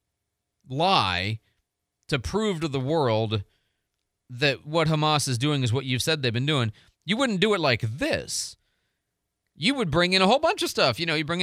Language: English